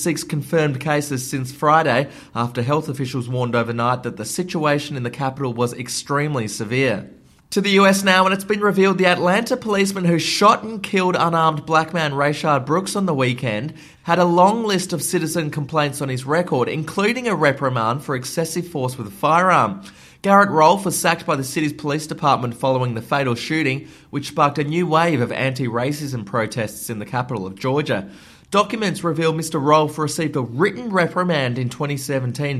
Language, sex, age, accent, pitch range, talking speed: English, male, 20-39, Australian, 125-170 Hz, 180 wpm